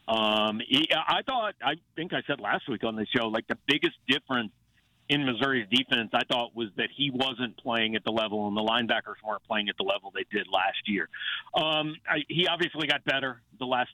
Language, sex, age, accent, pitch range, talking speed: English, male, 50-69, American, 120-150 Hz, 215 wpm